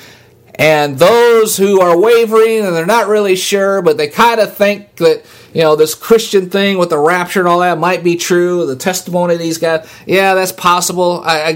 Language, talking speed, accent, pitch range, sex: English, 200 wpm, American, 115-185 Hz, male